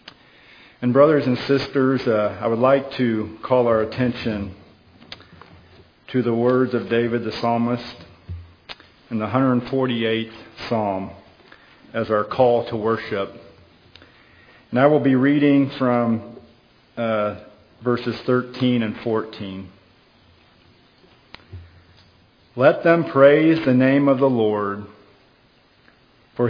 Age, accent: 50-69, American